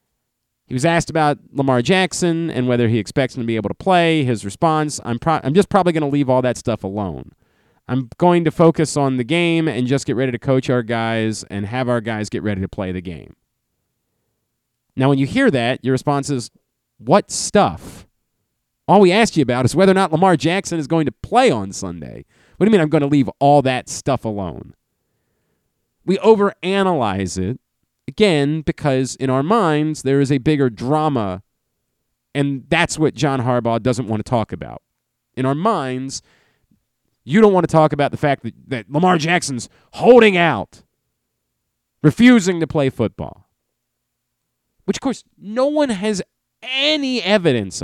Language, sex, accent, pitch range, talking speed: English, male, American, 120-175 Hz, 180 wpm